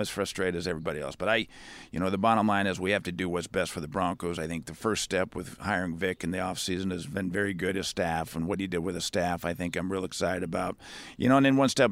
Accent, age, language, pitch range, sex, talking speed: American, 50-69, English, 95-105 Hz, male, 290 wpm